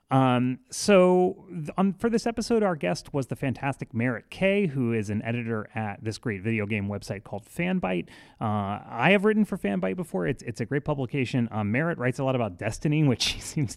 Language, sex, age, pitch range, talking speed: English, male, 30-49, 105-150 Hz, 210 wpm